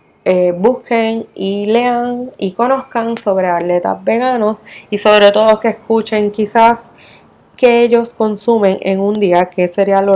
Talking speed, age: 140 wpm, 20-39